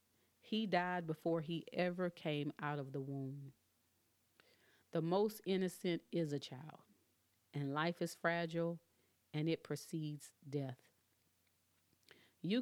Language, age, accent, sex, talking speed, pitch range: English, 30-49, American, female, 120 wpm, 140-165 Hz